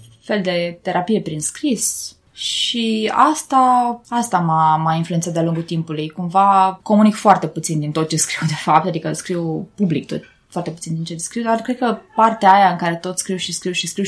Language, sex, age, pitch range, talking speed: Romanian, female, 20-39, 165-225 Hz, 190 wpm